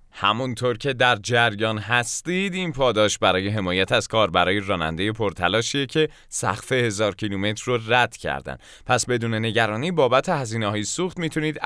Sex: male